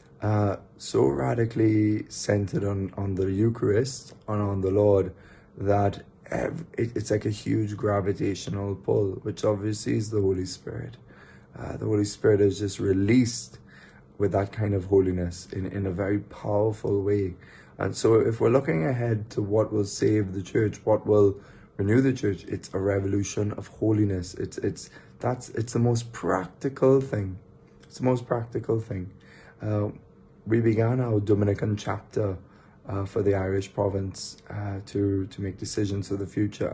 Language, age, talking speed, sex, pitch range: English, 20-39, 160 wpm, male, 100-115 Hz